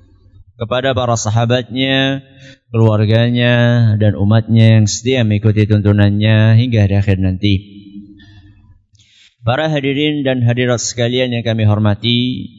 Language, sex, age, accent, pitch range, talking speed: Indonesian, male, 20-39, native, 105-120 Hz, 105 wpm